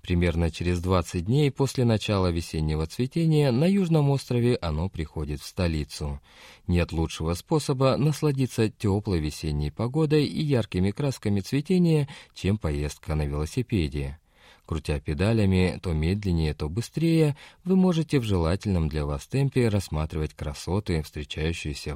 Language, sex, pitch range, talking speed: Russian, male, 80-130 Hz, 125 wpm